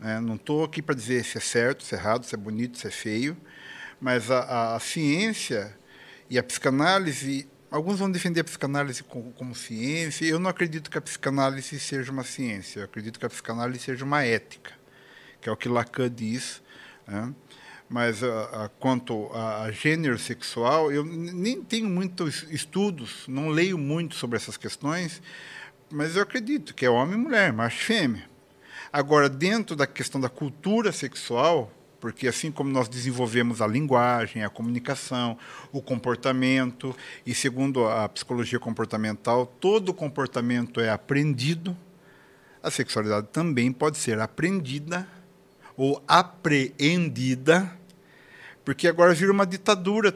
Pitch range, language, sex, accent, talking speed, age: 120-175 Hz, Portuguese, male, Brazilian, 150 wpm, 50-69